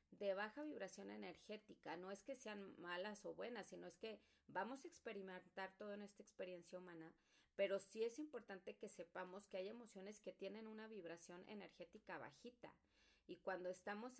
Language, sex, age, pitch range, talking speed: Spanish, female, 30-49, 170-205 Hz, 170 wpm